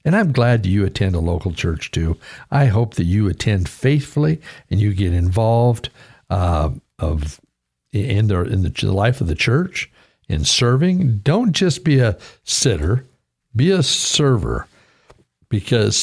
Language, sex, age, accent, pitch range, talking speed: English, male, 60-79, American, 100-125 Hz, 150 wpm